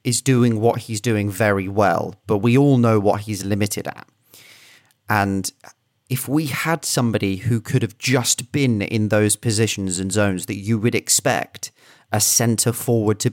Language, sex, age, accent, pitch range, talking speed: English, male, 30-49, British, 105-130 Hz, 170 wpm